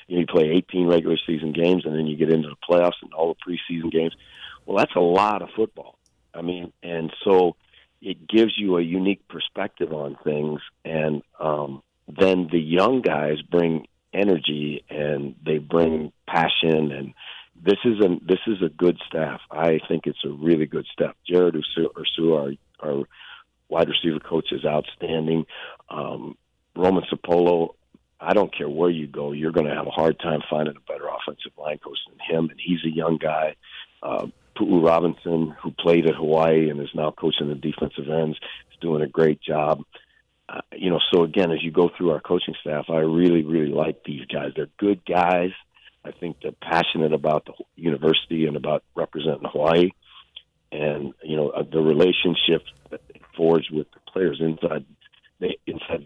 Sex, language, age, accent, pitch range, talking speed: male, English, 50-69, American, 75-85 Hz, 180 wpm